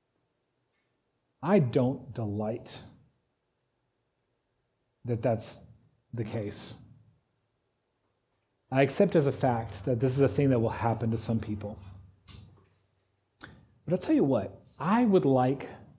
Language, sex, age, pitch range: English, male, 40-59, 115-155 Hz